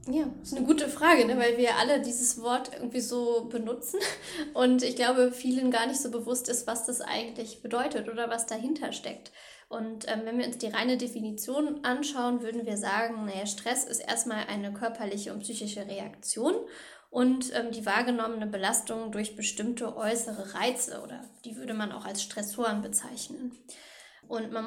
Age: 10-29